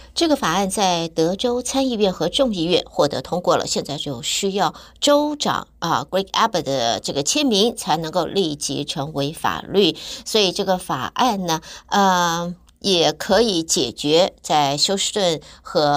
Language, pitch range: Chinese, 160-215 Hz